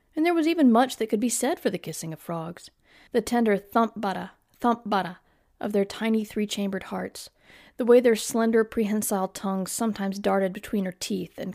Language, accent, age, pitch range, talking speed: English, American, 40-59, 185-245 Hz, 180 wpm